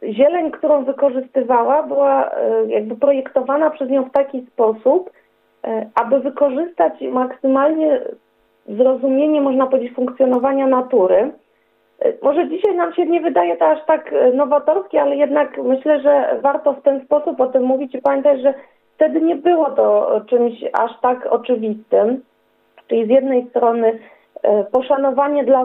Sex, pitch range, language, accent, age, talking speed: female, 230-280 Hz, Polish, native, 40-59, 135 wpm